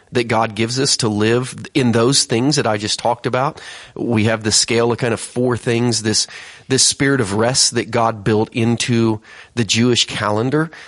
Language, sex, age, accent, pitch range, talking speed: English, male, 30-49, American, 105-125 Hz, 195 wpm